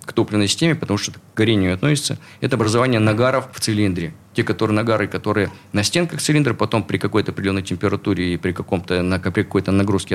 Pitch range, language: 95-130 Hz, Russian